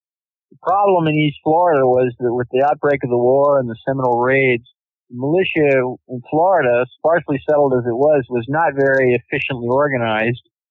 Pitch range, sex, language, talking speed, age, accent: 120-145 Hz, male, English, 175 wpm, 50-69, American